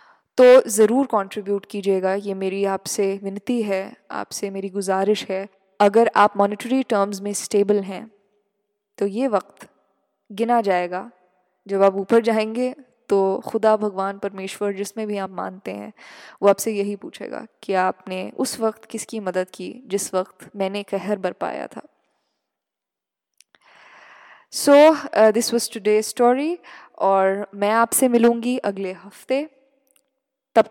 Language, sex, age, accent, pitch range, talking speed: Hindi, female, 10-29, native, 190-220 Hz, 130 wpm